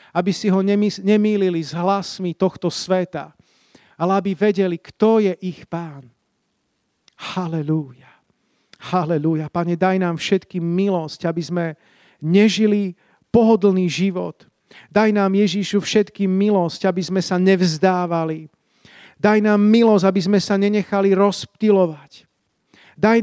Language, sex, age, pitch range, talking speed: Slovak, male, 40-59, 165-195 Hz, 115 wpm